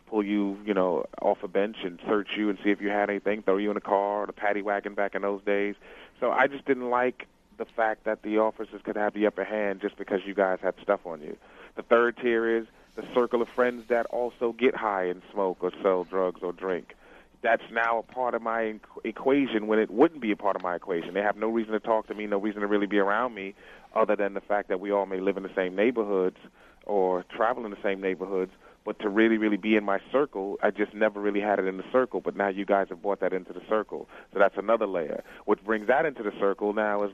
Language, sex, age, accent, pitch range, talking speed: English, male, 30-49, American, 100-115 Hz, 260 wpm